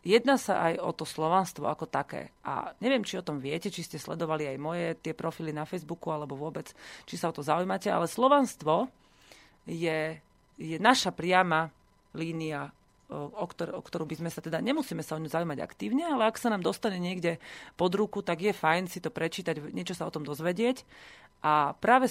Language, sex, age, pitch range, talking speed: Slovak, female, 30-49, 155-195 Hz, 190 wpm